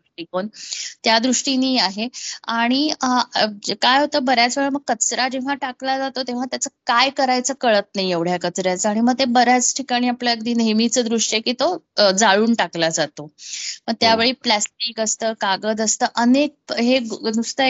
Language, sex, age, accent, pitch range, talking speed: Marathi, female, 20-39, native, 215-260 Hz, 155 wpm